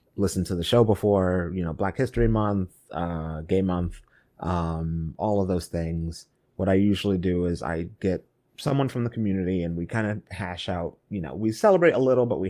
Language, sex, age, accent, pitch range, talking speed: English, male, 30-49, American, 85-105 Hz, 205 wpm